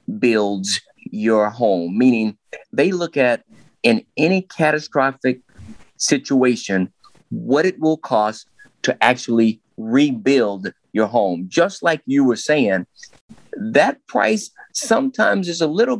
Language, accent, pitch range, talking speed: English, American, 110-160 Hz, 115 wpm